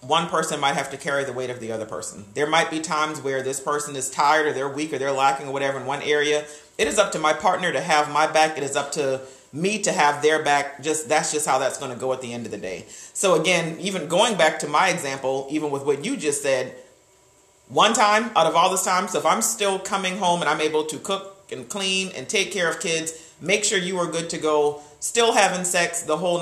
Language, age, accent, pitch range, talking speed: English, 40-59, American, 145-185 Hz, 260 wpm